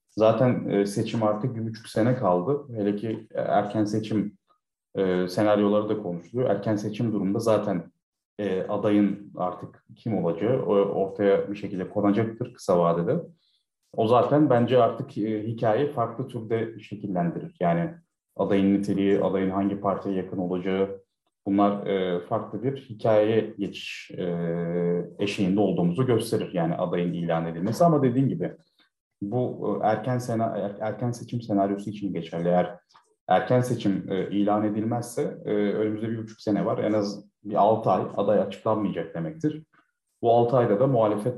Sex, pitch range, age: male, 100-115 Hz, 30-49